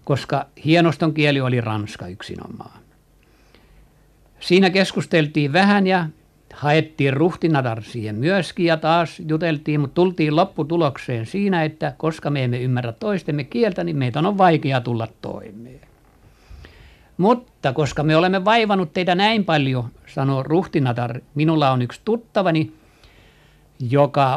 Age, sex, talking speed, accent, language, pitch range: 60-79, male, 120 wpm, native, Finnish, 130-170 Hz